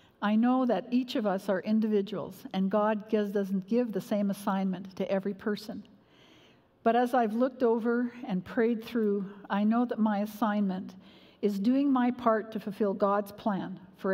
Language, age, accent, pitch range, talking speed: English, 50-69, American, 195-245 Hz, 170 wpm